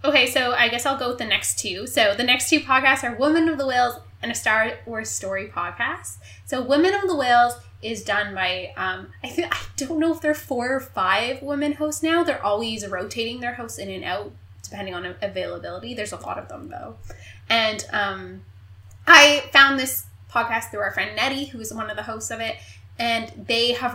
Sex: female